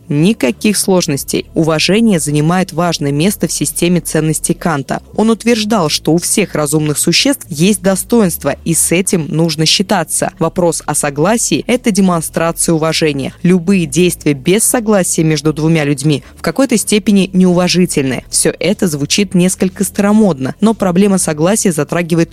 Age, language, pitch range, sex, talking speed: 20-39, Russian, 160-205 Hz, female, 135 wpm